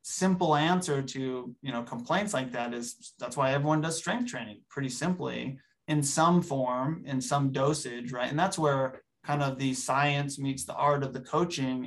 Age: 20-39